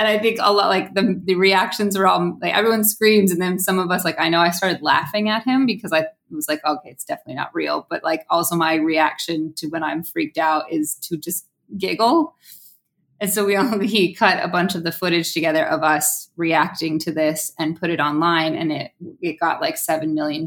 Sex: female